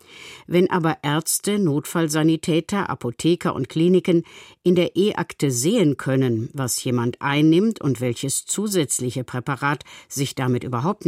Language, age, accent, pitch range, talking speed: German, 50-69, German, 130-180 Hz, 120 wpm